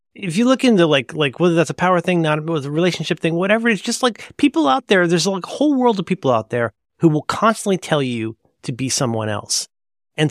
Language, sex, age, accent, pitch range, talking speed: English, male, 30-49, American, 125-195 Hz, 240 wpm